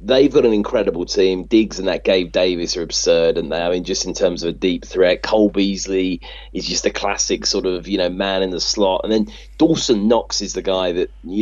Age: 30-49